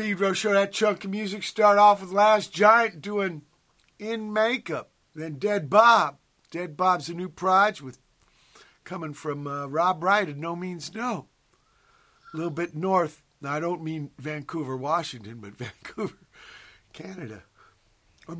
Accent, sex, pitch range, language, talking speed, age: American, male, 130-185 Hz, English, 145 wpm, 50-69